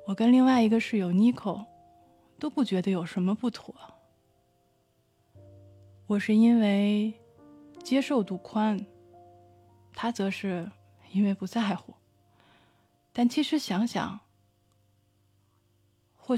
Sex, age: female, 20-39